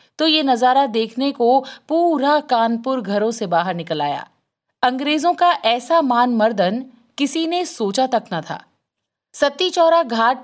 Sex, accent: female, native